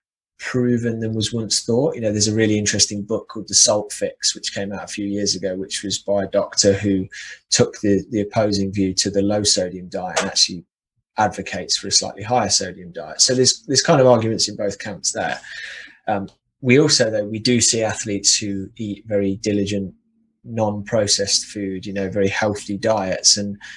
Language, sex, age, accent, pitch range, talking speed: English, male, 20-39, British, 100-120 Hz, 195 wpm